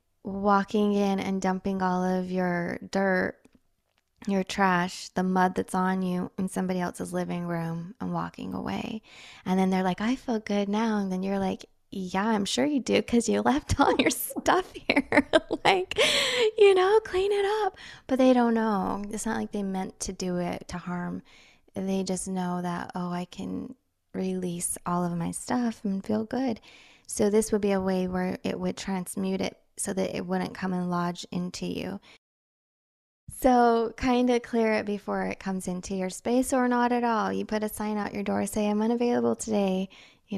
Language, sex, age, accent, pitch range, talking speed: English, female, 20-39, American, 185-230 Hz, 190 wpm